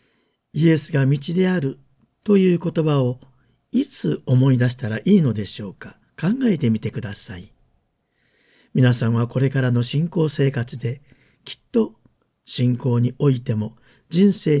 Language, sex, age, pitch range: Japanese, male, 50-69, 120-155 Hz